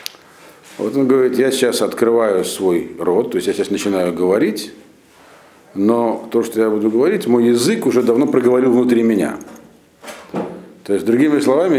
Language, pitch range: Russian, 110-135 Hz